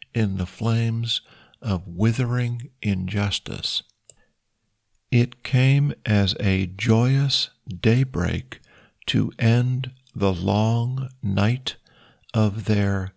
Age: 50-69